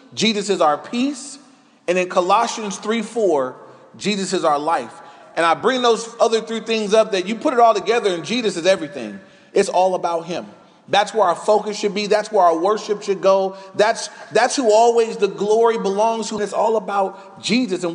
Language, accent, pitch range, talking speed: English, American, 180-235 Hz, 200 wpm